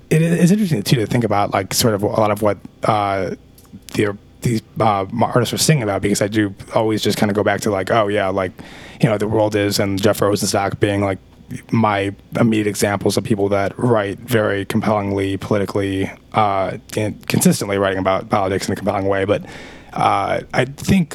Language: English